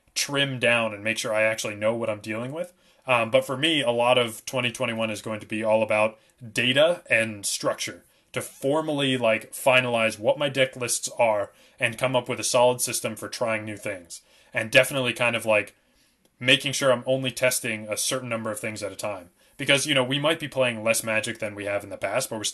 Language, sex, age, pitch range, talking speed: English, male, 20-39, 110-130 Hz, 225 wpm